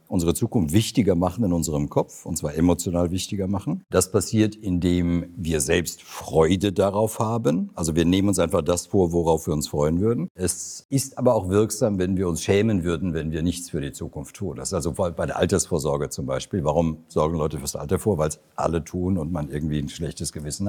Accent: German